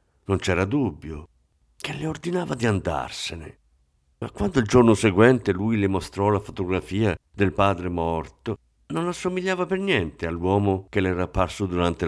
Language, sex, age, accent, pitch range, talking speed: Italian, male, 50-69, native, 75-120 Hz, 155 wpm